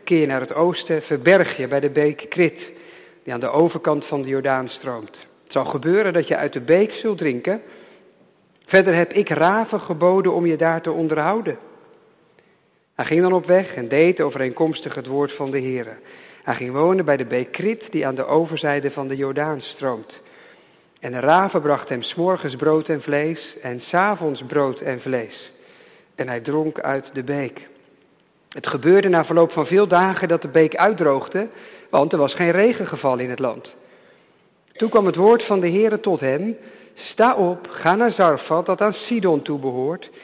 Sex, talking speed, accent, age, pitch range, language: male, 185 wpm, Dutch, 50-69, 145-190 Hz, English